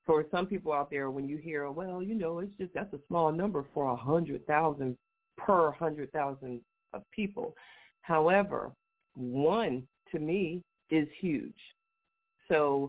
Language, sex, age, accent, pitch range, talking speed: English, female, 50-69, American, 135-190 Hz, 140 wpm